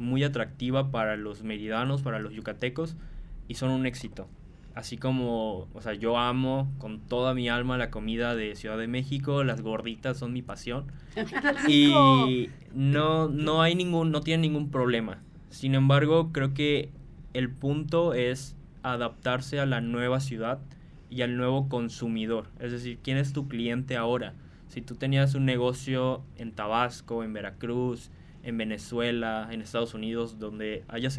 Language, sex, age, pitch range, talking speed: Spanish, male, 20-39, 115-135 Hz, 155 wpm